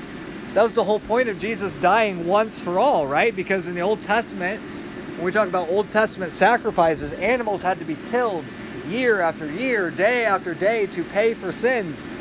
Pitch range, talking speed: 165-215 Hz, 190 wpm